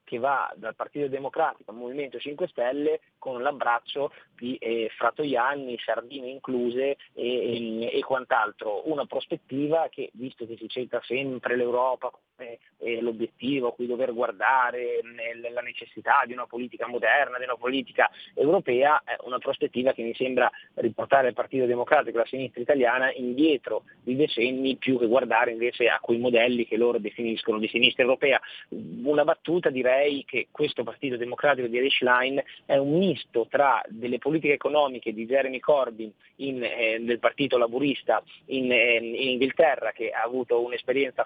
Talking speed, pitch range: 155 wpm, 120-140 Hz